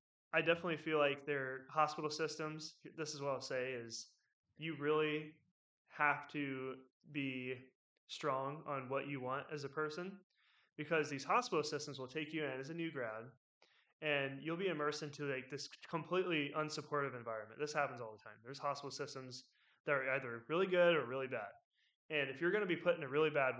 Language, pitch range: English, 135-155 Hz